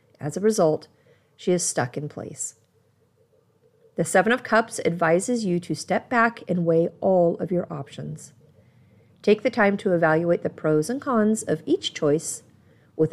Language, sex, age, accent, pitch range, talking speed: English, female, 40-59, American, 160-225 Hz, 165 wpm